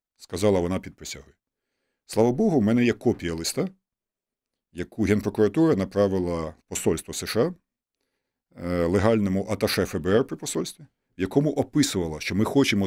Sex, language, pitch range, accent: male, Ukrainian, 90-120 Hz, native